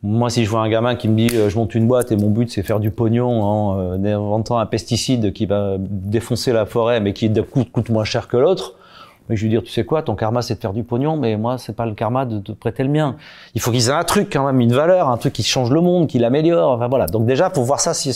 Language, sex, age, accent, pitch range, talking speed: French, male, 30-49, French, 115-155 Hz, 295 wpm